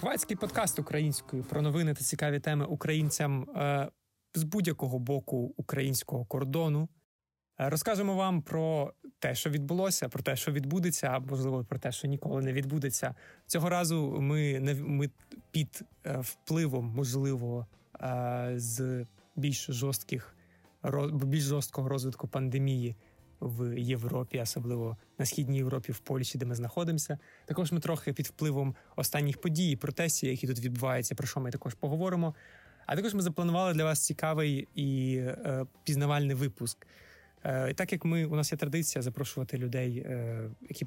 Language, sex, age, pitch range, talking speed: Ukrainian, male, 20-39, 130-150 Hz, 140 wpm